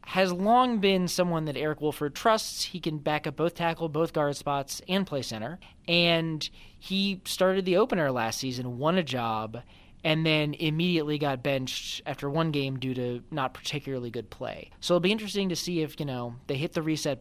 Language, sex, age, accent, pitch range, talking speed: English, male, 20-39, American, 135-165 Hz, 200 wpm